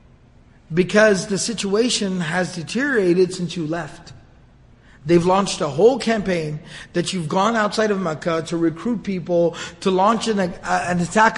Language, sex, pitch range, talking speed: Malay, male, 170-220 Hz, 135 wpm